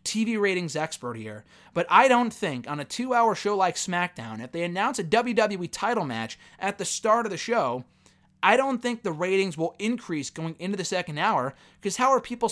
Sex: male